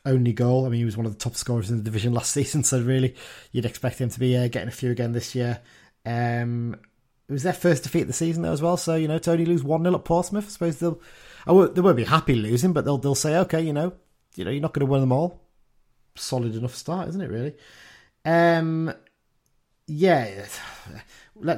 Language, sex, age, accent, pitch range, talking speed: English, male, 30-49, British, 115-155 Hz, 245 wpm